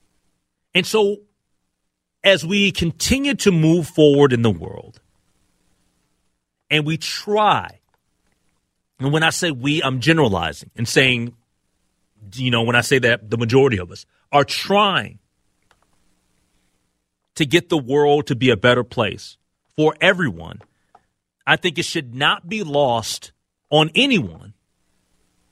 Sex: male